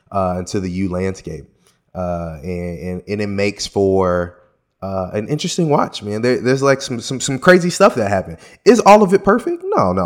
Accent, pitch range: American, 90-110 Hz